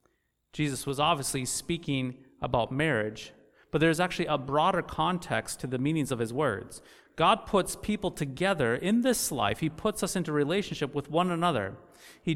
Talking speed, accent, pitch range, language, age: 165 wpm, American, 120-165 Hz, English, 30-49